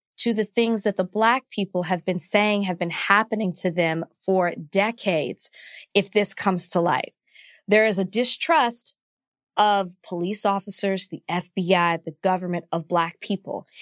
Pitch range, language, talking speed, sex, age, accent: 180-230 Hz, English, 155 wpm, female, 20-39, American